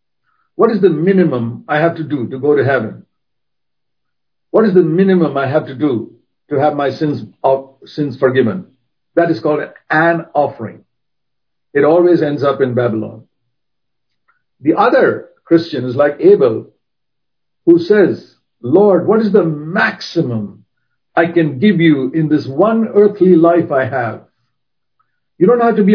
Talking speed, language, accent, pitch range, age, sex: 150 wpm, English, Indian, 145-195 Hz, 60-79, male